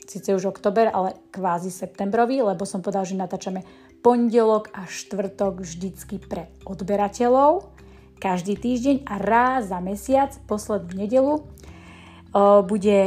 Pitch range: 190-225 Hz